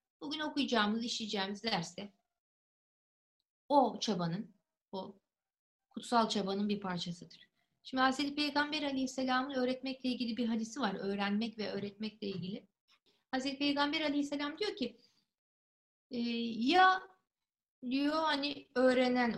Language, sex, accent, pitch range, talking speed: Turkish, female, native, 205-280 Hz, 100 wpm